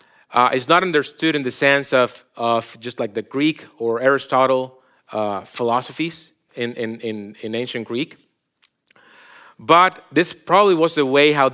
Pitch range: 140-200 Hz